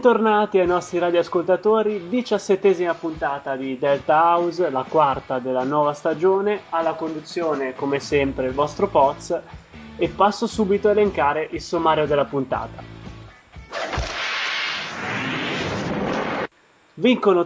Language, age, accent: Italian, 20-39, native